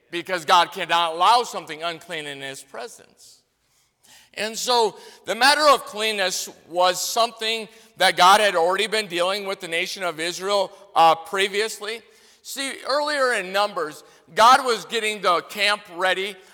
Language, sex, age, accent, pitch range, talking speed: English, male, 50-69, American, 190-235 Hz, 145 wpm